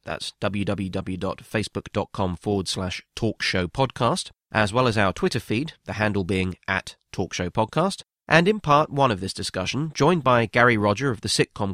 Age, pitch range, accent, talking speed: 30-49, 100-135 Hz, British, 155 wpm